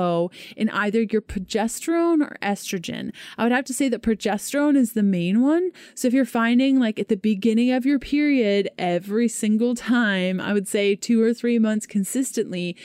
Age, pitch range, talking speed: 20-39, 195-250 Hz, 180 wpm